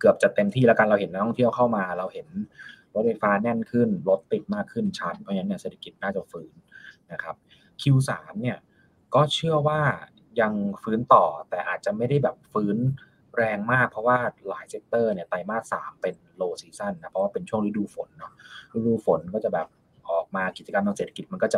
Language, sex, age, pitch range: Thai, male, 20-39, 105-155 Hz